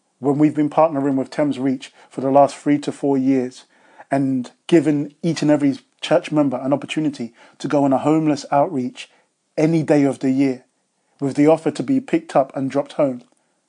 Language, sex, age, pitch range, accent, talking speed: English, male, 20-39, 135-155 Hz, British, 195 wpm